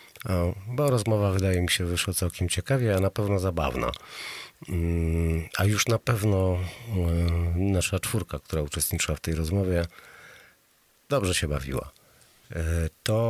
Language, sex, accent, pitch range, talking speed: Polish, male, native, 80-105 Hz, 125 wpm